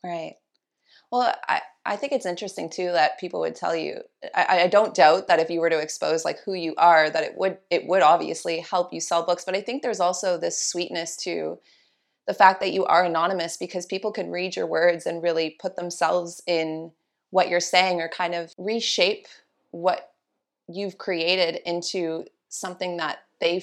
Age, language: 30-49, English